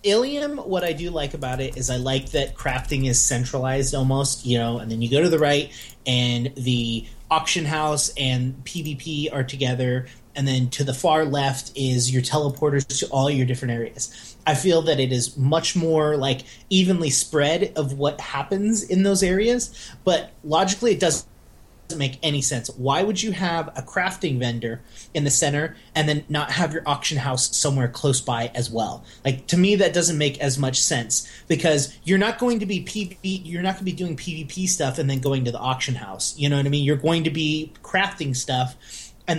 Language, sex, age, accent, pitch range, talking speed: English, male, 30-49, American, 130-160 Hz, 205 wpm